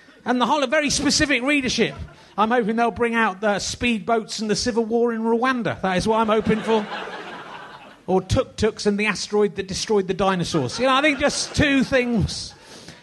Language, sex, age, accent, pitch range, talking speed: English, male, 30-49, British, 180-230 Hz, 195 wpm